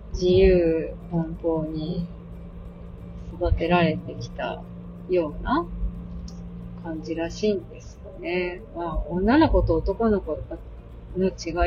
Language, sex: Japanese, female